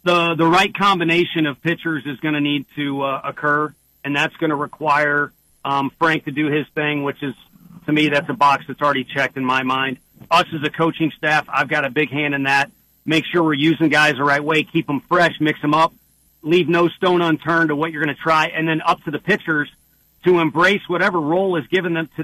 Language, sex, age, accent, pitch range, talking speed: English, male, 40-59, American, 145-170 Hz, 235 wpm